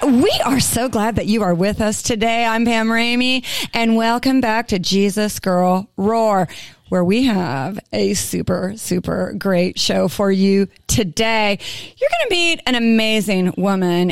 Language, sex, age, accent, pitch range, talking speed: English, female, 30-49, American, 190-245 Hz, 160 wpm